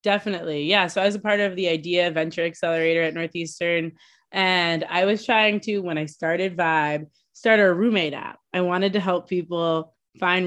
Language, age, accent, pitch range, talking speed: English, 20-39, American, 150-185 Hz, 190 wpm